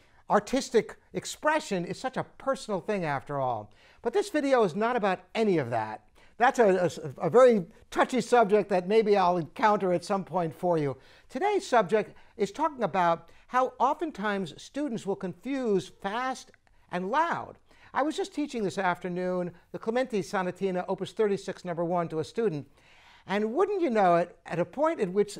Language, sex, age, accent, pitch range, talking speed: English, male, 60-79, American, 175-240 Hz, 170 wpm